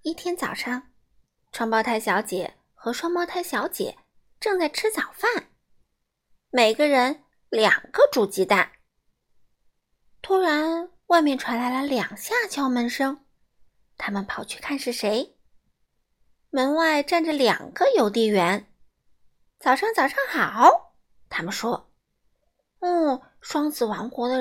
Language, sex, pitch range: Chinese, female, 235-350 Hz